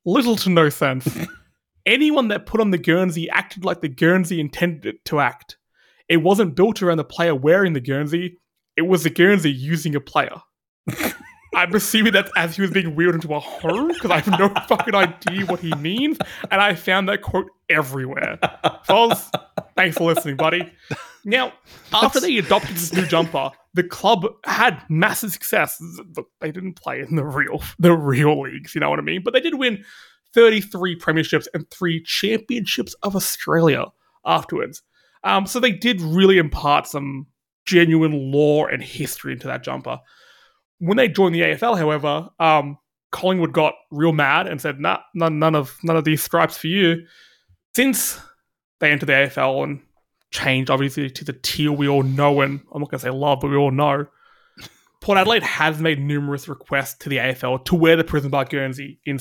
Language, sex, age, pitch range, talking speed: English, male, 20-39, 145-190 Hz, 185 wpm